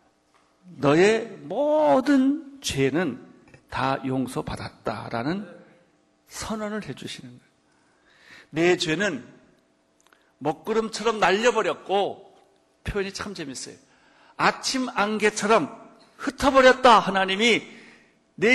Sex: male